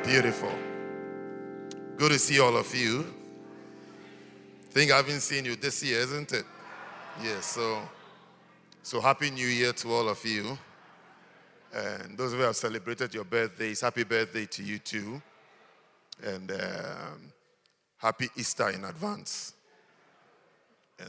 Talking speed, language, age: 130 wpm, English, 50-69